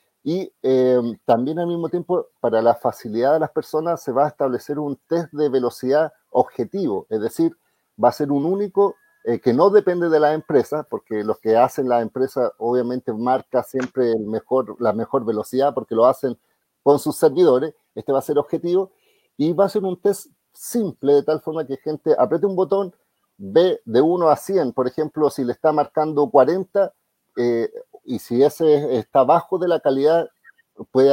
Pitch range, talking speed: 130-185 Hz, 185 wpm